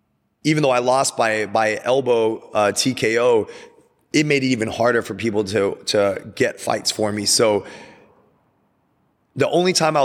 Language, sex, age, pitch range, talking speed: English, male, 30-49, 105-130 Hz, 160 wpm